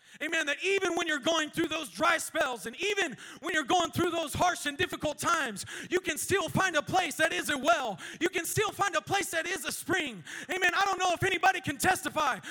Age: 40-59